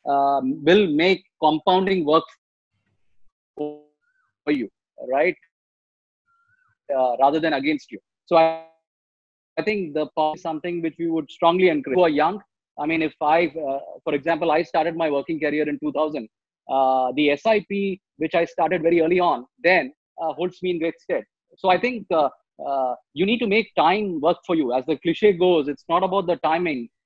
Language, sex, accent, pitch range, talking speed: English, male, Indian, 150-190 Hz, 175 wpm